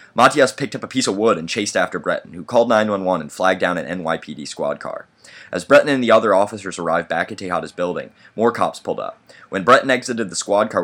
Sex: male